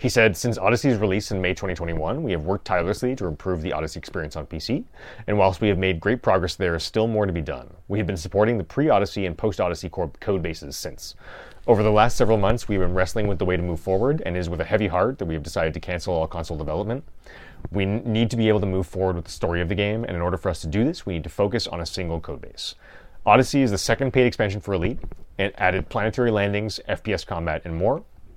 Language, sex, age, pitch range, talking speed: English, male, 30-49, 90-110 Hz, 260 wpm